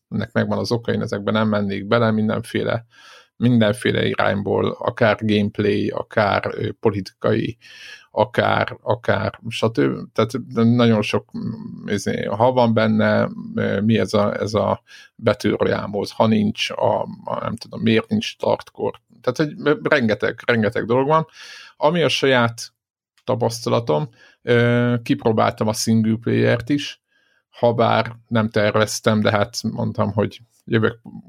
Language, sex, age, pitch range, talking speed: Hungarian, male, 50-69, 110-120 Hz, 125 wpm